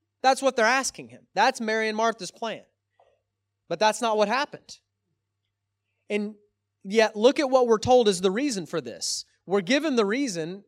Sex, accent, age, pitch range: male, American, 30-49, 160-240 Hz